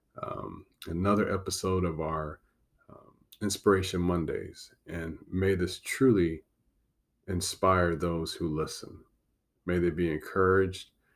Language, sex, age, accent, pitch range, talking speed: English, male, 30-49, American, 85-100 Hz, 110 wpm